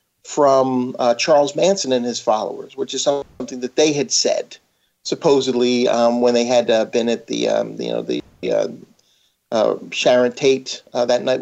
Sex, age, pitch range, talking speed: male, 50-69, 120-145 Hz, 190 wpm